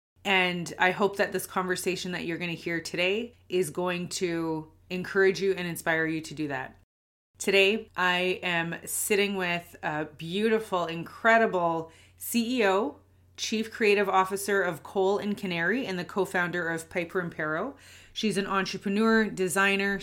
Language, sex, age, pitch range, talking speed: English, female, 30-49, 180-215 Hz, 150 wpm